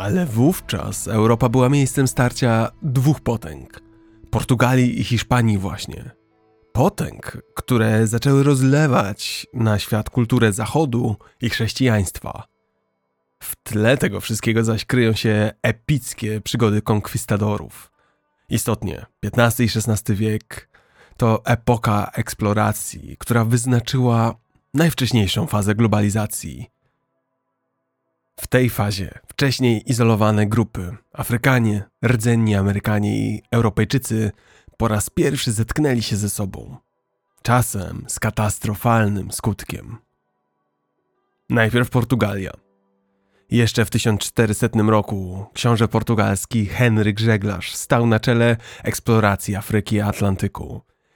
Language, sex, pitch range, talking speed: Polish, male, 105-120 Hz, 100 wpm